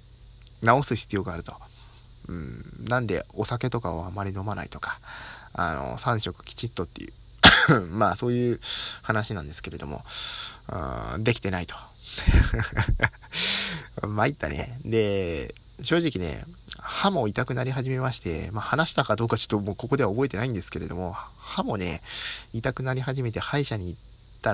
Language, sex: Japanese, male